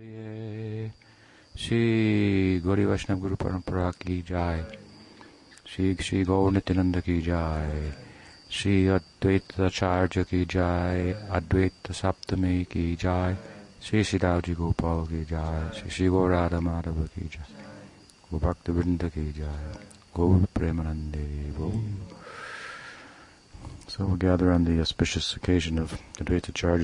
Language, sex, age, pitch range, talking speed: English, male, 50-69, 85-95 Hz, 30 wpm